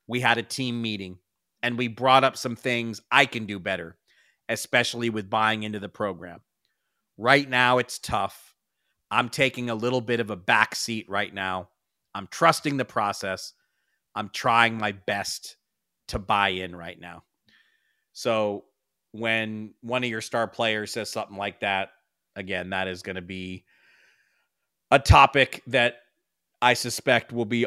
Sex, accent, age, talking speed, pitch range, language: male, American, 40-59, 160 wpm, 95-120 Hz, English